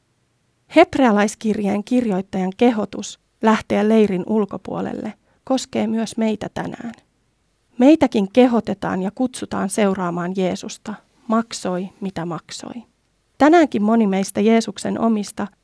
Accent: native